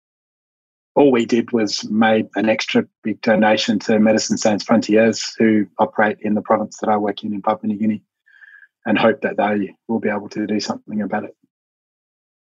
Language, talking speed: English, 185 wpm